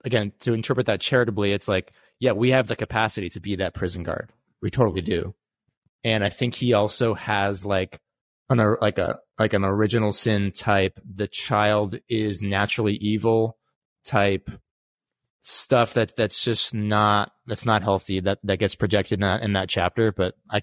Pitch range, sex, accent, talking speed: 95-115 Hz, male, American, 175 wpm